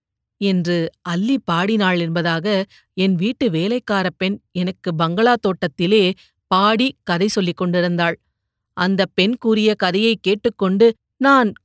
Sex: female